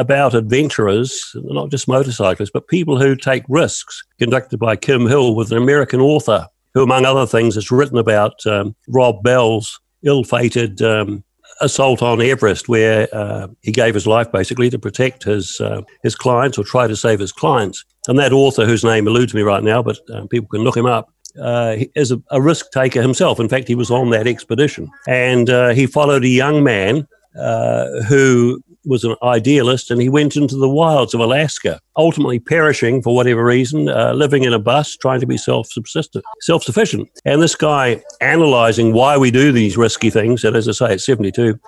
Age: 60-79